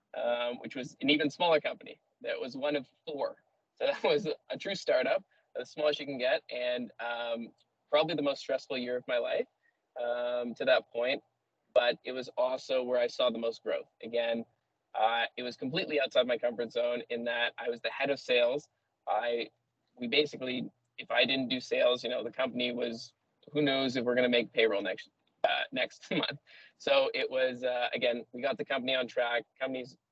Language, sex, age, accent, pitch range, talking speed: English, male, 20-39, American, 115-130 Hz, 200 wpm